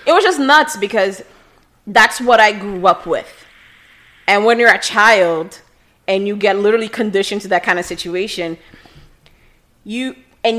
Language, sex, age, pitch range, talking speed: English, female, 20-39, 180-235 Hz, 160 wpm